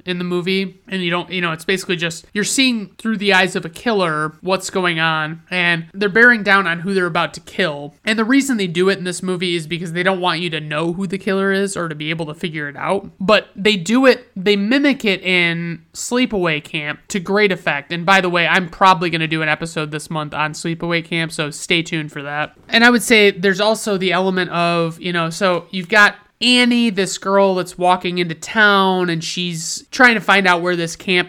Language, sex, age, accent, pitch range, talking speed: English, male, 30-49, American, 170-205 Hz, 240 wpm